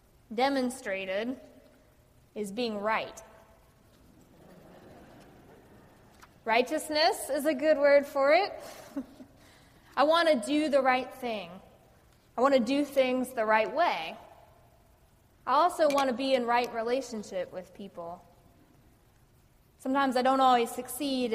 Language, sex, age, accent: English, female, 20-39, American